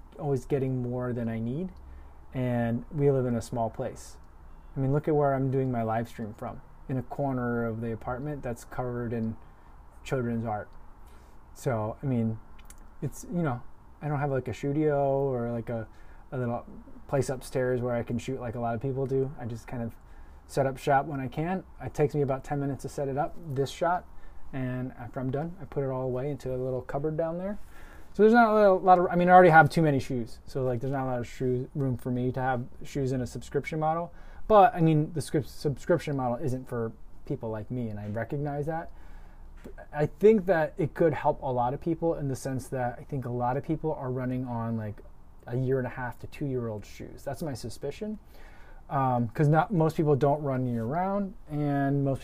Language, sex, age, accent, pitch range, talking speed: English, male, 20-39, American, 120-145 Hz, 225 wpm